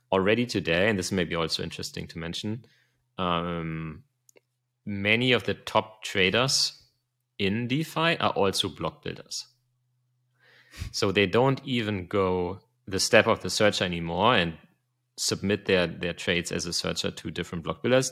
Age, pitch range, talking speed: 30-49, 90-120 Hz, 150 wpm